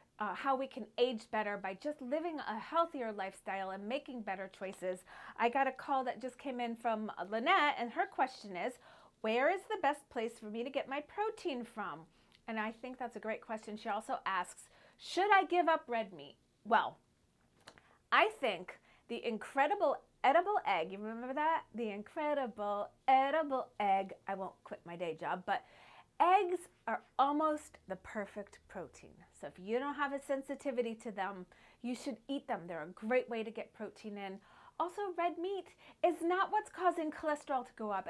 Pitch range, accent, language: 210-310 Hz, American, English